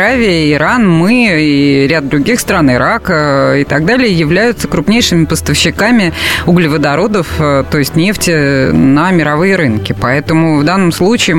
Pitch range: 145-210 Hz